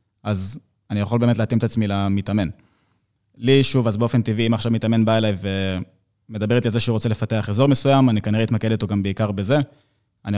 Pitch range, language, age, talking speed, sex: 105-120 Hz, Hebrew, 20-39, 200 wpm, male